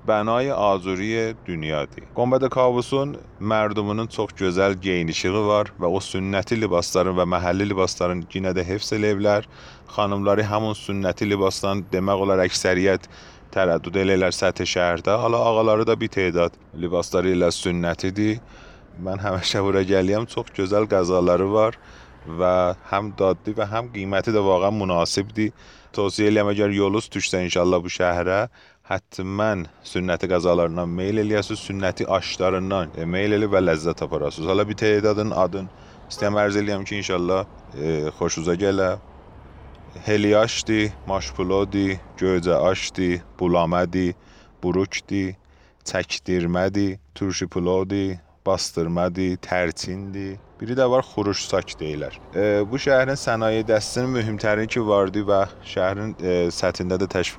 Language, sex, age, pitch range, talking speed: Persian, male, 30-49, 90-105 Hz, 115 wpm